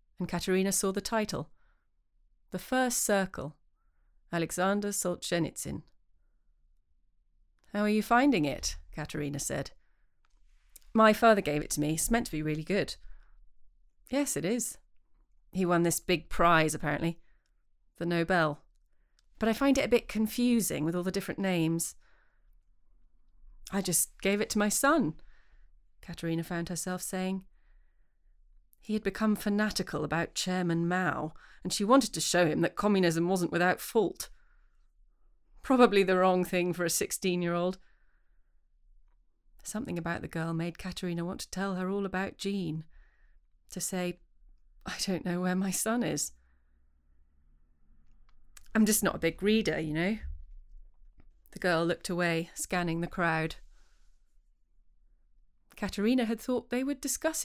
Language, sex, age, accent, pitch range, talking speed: English, female, 30-49, British, 150-200 Hz, 135 wpm